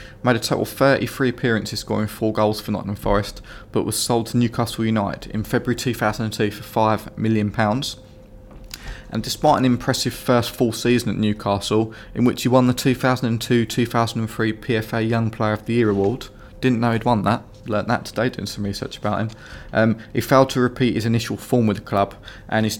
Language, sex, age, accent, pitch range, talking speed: English, male, 20-39, British, 105-120 Hz, 220 wpm